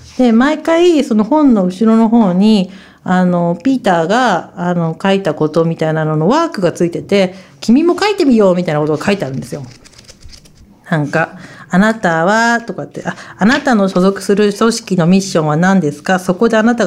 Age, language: 40-59, Japanese